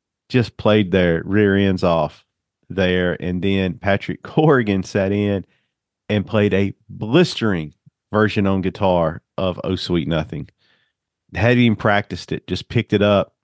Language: English